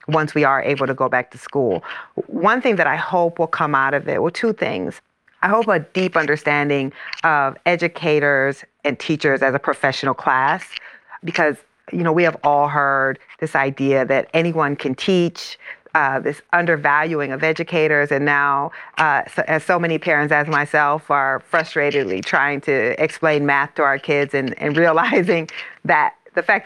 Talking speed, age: 175 wpm, 40-59